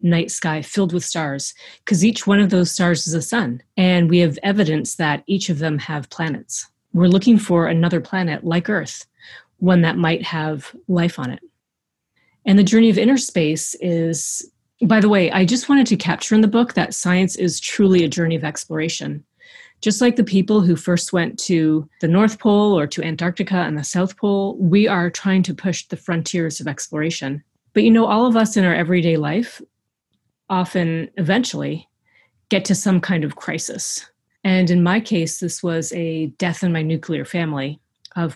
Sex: female